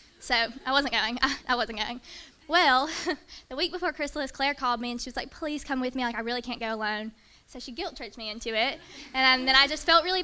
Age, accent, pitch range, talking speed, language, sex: 20-39, American, 230-255 Hz, 260 wpm, English, female